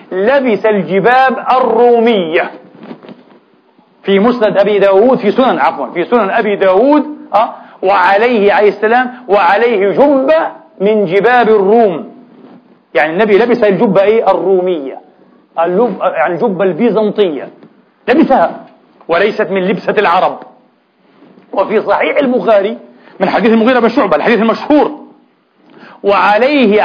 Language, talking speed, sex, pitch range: Arabic, 105 wpm, male, 195-240 Hz